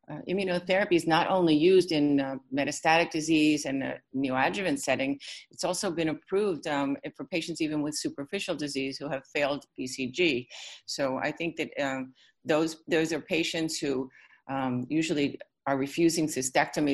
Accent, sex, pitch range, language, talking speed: American, female, 140-165 Hz, English, 150 wpm